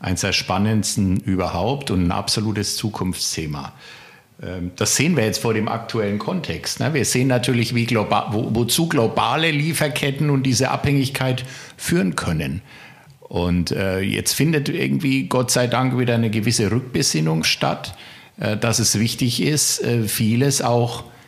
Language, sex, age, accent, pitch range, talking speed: German, male, 60-79, German, 95-125 Hz, 135 wpm